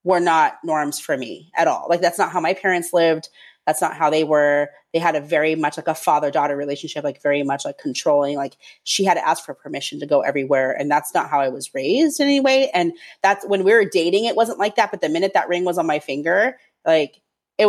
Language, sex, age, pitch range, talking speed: English, female, 30-49, 155-215 Hz, 250 wpm